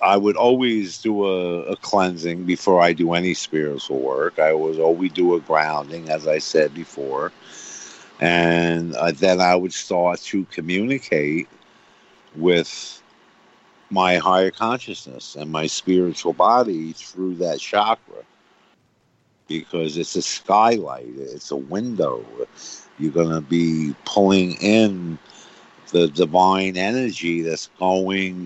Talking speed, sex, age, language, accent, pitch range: 130 wpm, male, 50-69, English, American, 80-100 Hz